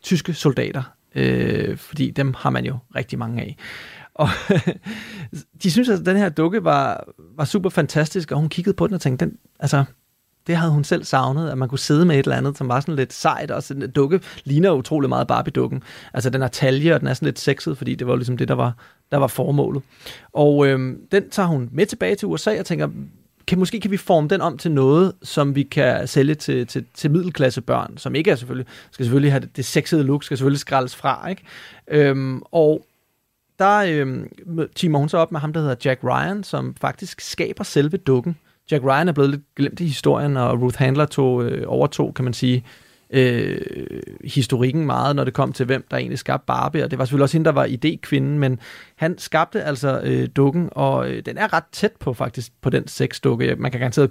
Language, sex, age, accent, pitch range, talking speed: Danish, male, 30-49, native, 130-160 Hz, 220 wpm